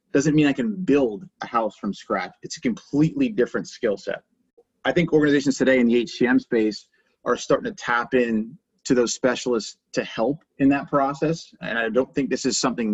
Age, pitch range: 30-49, 115-145 Hz